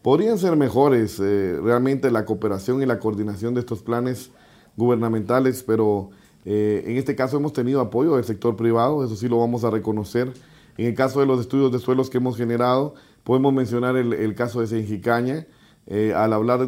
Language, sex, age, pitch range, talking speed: Spanish, male, 40-59, 110-130 Hz, 185 wpm